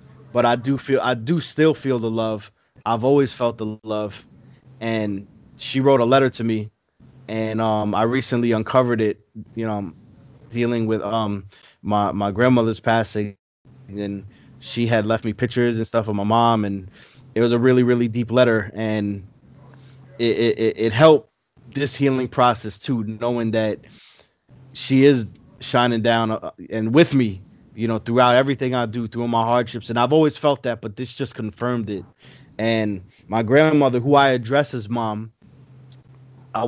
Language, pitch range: English, 110-130 Hz